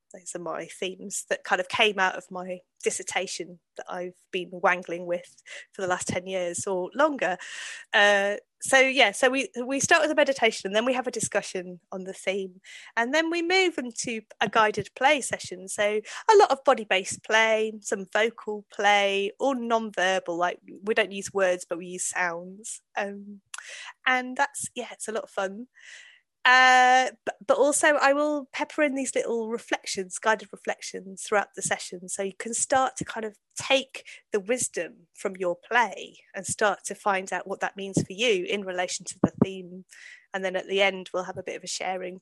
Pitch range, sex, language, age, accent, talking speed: 190-260 Hz, female, English, 20-39, British, 200 wpm